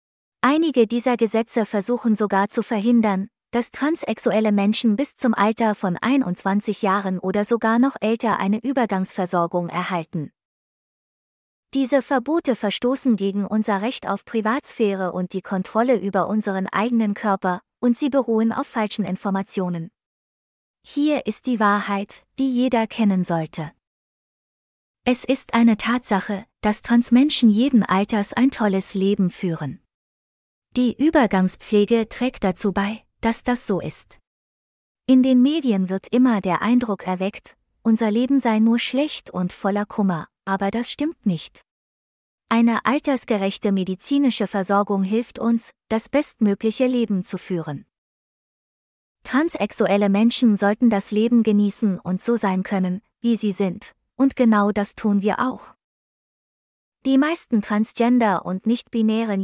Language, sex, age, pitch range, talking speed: German, female, 20-39, 195-240 Hz, 130 wpm